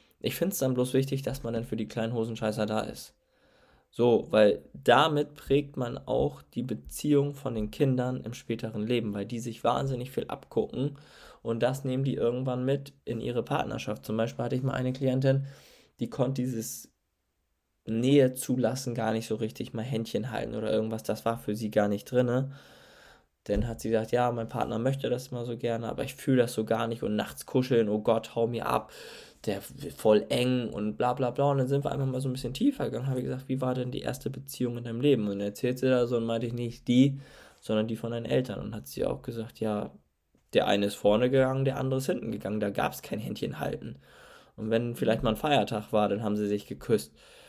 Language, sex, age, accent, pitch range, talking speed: German, male, 20-39, German, 110-130 Hz, 225 wpm